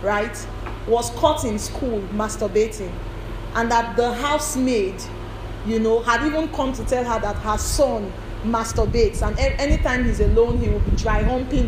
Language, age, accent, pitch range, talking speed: English, 40-59, Nigerian, 215-320 Hz, 155 wpm